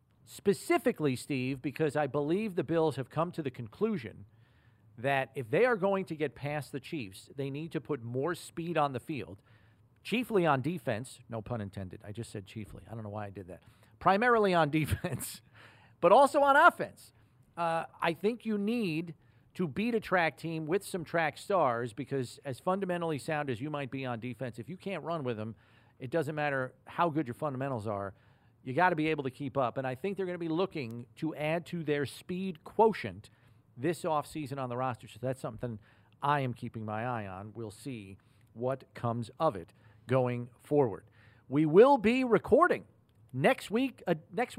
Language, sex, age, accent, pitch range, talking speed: English, male, 40-59, American, 120-170 Hz, 195 wpm